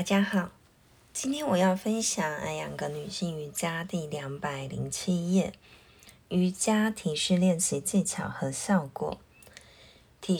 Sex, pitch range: female, 155-200 Hz